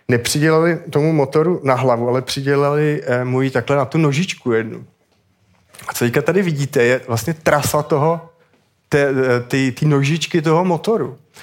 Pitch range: 120-150 Hz